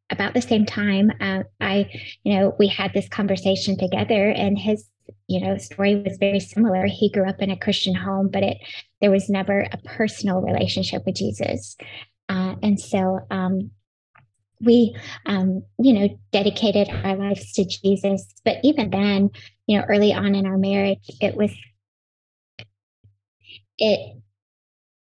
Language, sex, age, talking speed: English, female, 20-39, 155 wpm